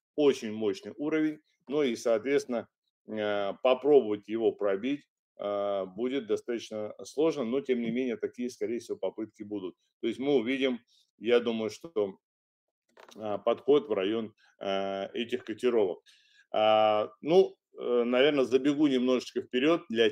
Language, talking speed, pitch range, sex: Russian, 115 wpm, 105-155 Hz, male